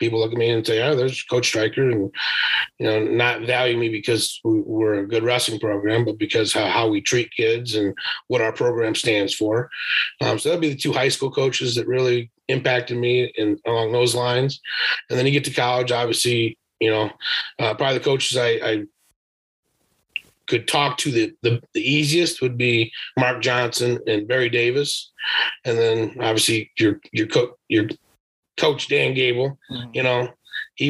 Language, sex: English, male